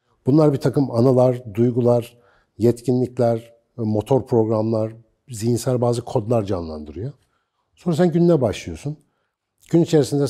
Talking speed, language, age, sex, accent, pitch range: 105 wpm, Turkish, 60-79, male, native, 110-140 Hz